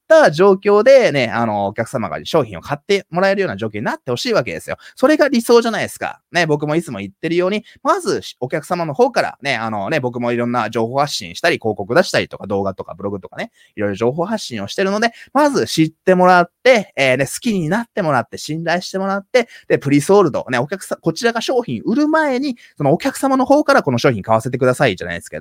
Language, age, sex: Japanese, 20-39, male